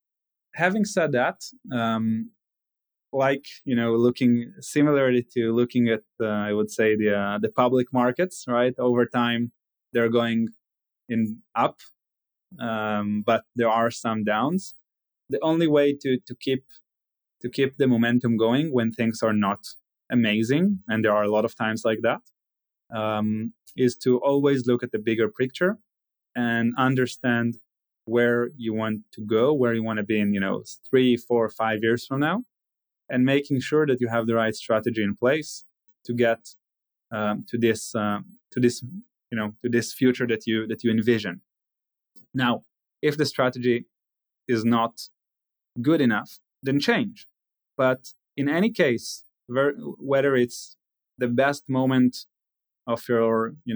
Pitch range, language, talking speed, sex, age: 115-130 Hz, English, 155 wpm, male, 20-39